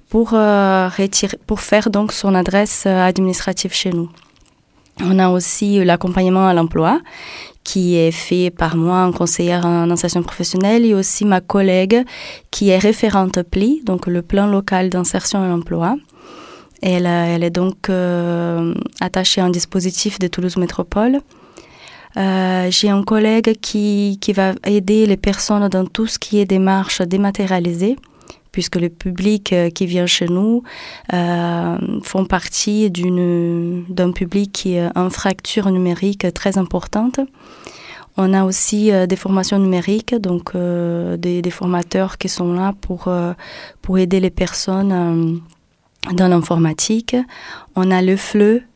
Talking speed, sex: 145 wpm, female